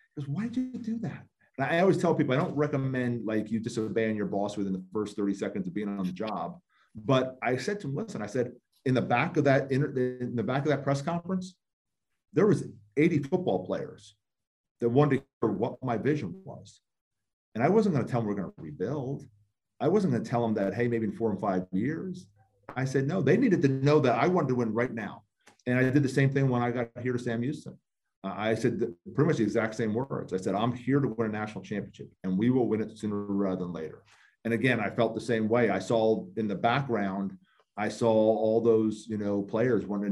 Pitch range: 100-135 Hz